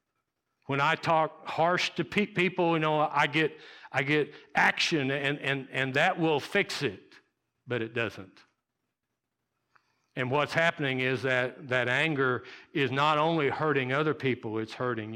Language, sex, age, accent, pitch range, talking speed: English, male, 60-79, American, 135-180 Hz, 150 wpm